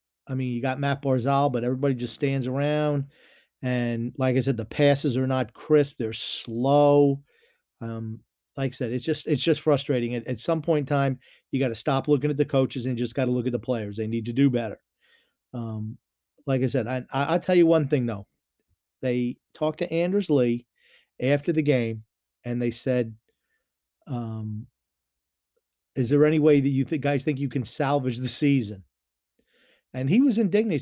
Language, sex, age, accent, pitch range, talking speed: English, male, 40-59, American, 120-145 Hz, 195 wpm